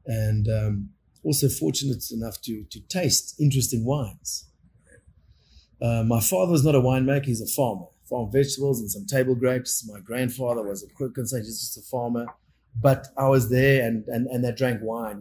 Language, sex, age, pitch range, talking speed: English, male, 30-49, 110-125 Hz, 180 wpm